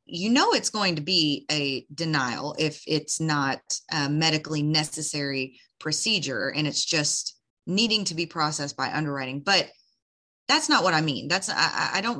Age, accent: 30-49, American